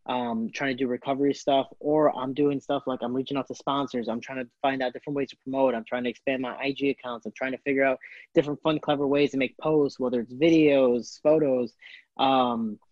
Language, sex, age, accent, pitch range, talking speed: English, male, 20-39, American, 125-150 Hz, 230 wpm